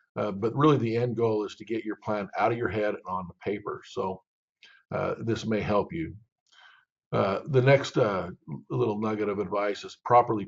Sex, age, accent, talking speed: male, 50-69, American, 200 wpm